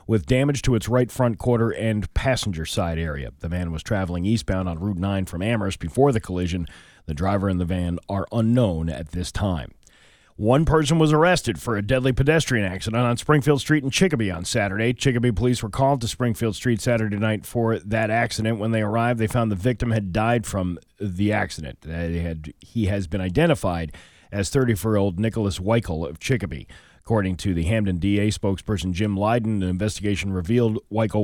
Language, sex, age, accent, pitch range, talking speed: English, male, 40-59, American, 90-120 Hz, 190 wpm